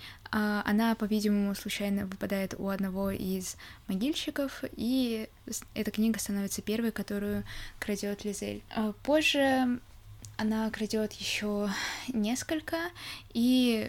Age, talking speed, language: 20-39, 95 wpm, Russian